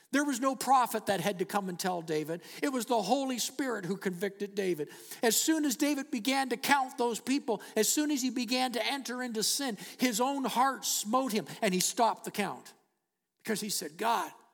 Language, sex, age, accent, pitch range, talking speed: English, male, 50-69, American, 175-225 Hz, 210 wpm